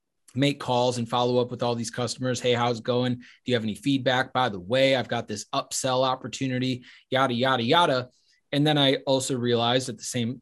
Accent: American